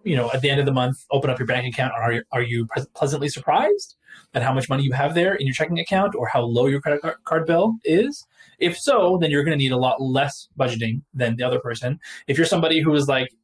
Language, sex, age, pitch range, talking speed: English, male, 20-39, 125-155 Hz, 265 wpm